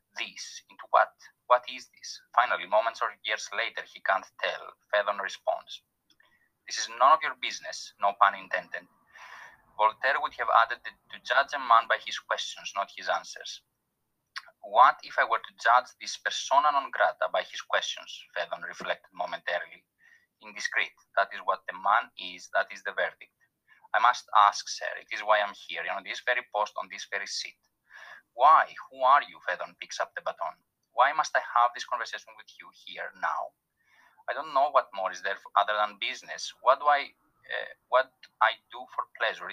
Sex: male